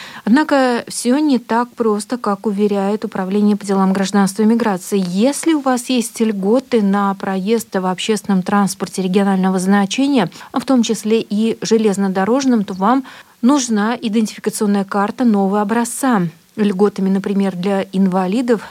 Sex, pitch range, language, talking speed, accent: female, 195-235 Hz, Russian, 130 wpm, native